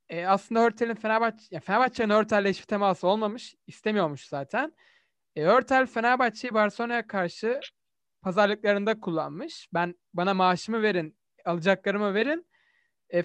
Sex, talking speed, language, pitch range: male, 120 wpm, Turkish, 175-240 Hz